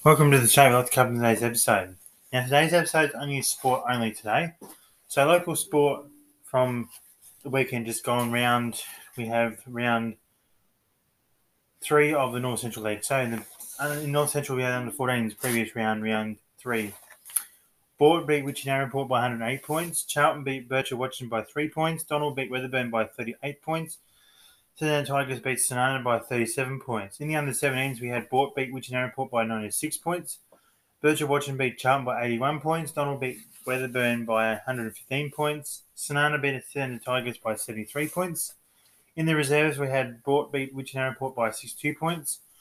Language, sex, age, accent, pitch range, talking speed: English, male, 20-39, Australian, 120-145 Hz, 170 wpm